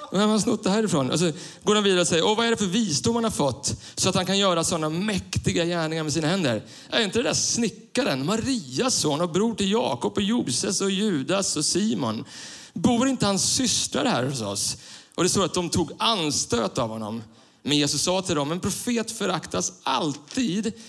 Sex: male